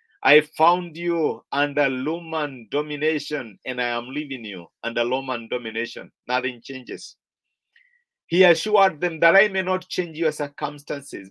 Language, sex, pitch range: English, male, 145-175 Hz